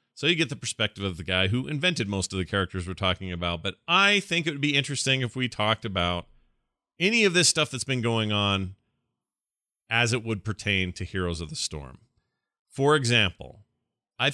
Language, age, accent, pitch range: English, 30-49, American, 95-125 Hz